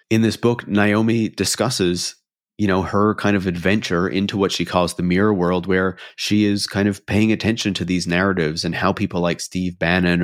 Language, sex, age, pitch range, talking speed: English, male, 30-49, 85-100 Hz, 200 wpm